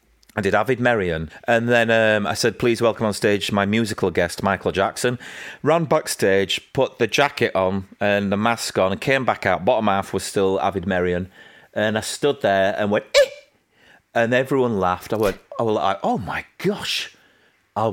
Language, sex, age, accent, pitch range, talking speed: English, male, 30-49, British, 95-120 Hz, 185 wpm